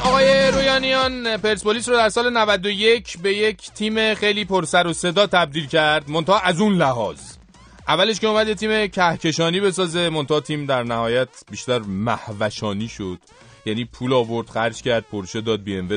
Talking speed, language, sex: 160 wpm, Persian, male